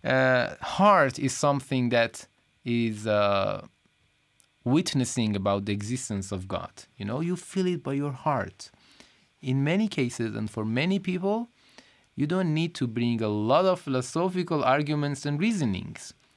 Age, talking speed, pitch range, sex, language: 30-49, 150 wpm, 115-155 Hz, male, Persian